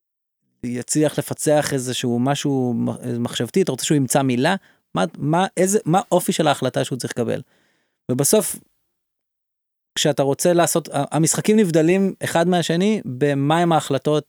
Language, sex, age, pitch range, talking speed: Hebrew, male, 20-39, 130-165 Hz, 135 wpm